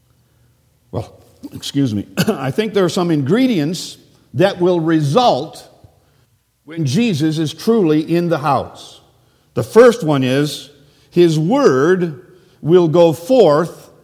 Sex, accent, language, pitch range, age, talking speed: male, American, English, 145-200 Hz, 50-69, 120 wpm